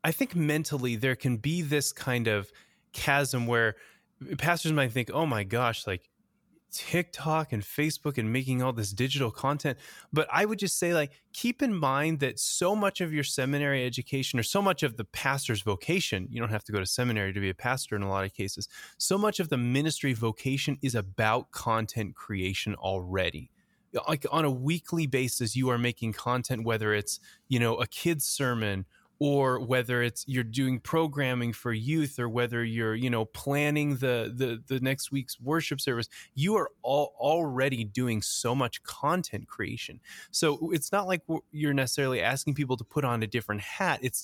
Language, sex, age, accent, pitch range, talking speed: English, male, 20-39, American, 115-150 Hz, 185 wpm